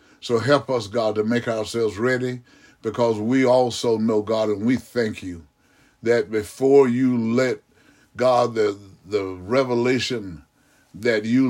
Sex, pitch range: male, 110-125 Hz